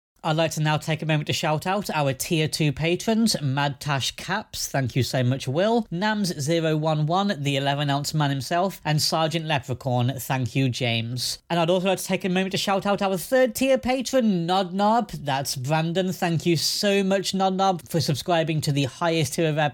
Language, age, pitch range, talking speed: English, 30-49, 145-185 Hz, 195 wpm